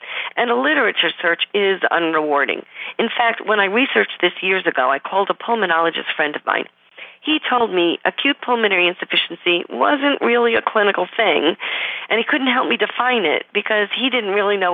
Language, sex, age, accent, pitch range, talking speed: English, female, 40-59, American, 170-230 Hz, 180 wpm